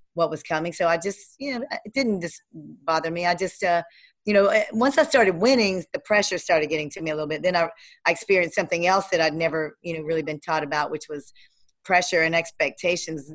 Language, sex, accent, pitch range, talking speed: English, female, American, 165-210 Hz, 230 wpm